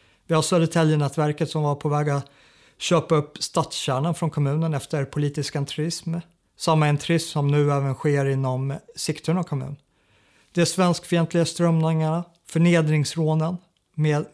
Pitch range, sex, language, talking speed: 135-160 Hz, male, Swedish, 135 wpm